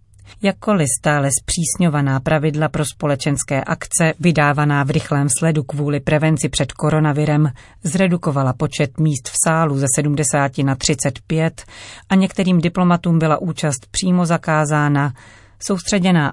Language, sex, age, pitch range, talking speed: Czech, female, 40-59, 140-165 Hz, 120 wpm